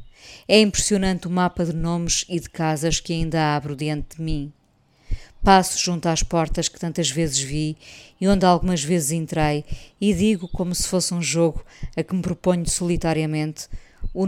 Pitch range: 150-175 Hz